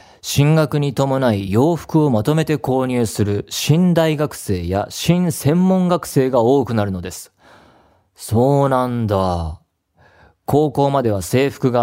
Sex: male